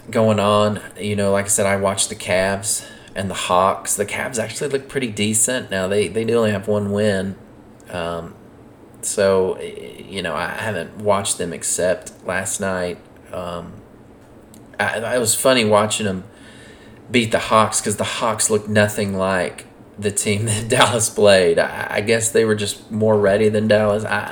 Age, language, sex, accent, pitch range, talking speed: 30-49, English, male, American, 100-115 Hz, 175 wpm